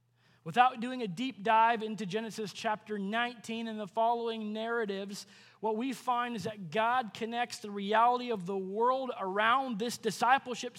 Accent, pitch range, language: American, 195-245 Hz, English